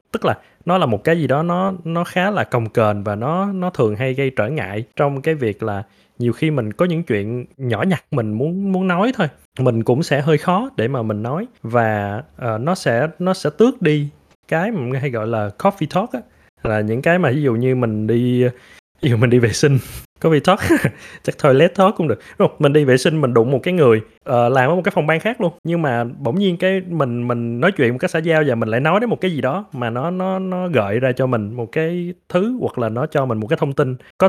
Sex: male